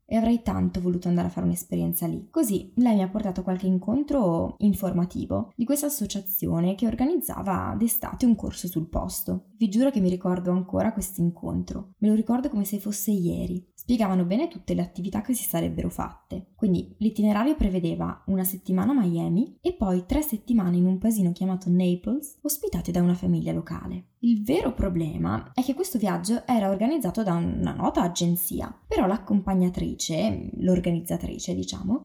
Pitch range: 180-230 Hz